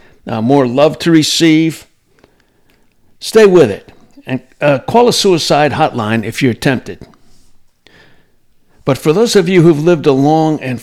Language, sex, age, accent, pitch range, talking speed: English, male, 60-79, American, 120-155 Hz, 150 wpm